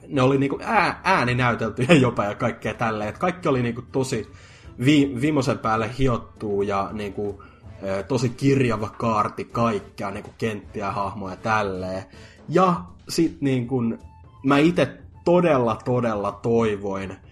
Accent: native